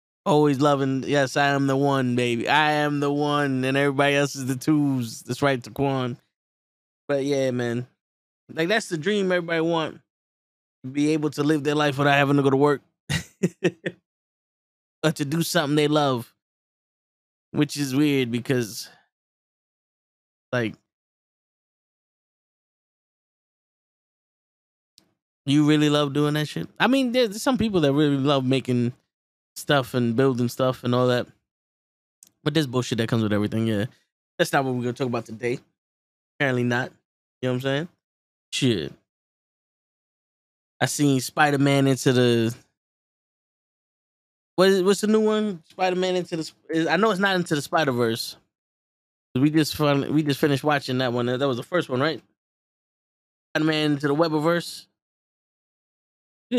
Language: English